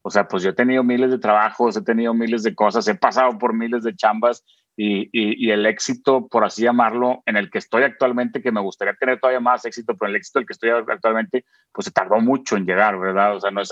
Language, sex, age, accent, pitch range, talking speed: Spanish, male, 30-49, Mexican, 105-125 Hz, 260 wpm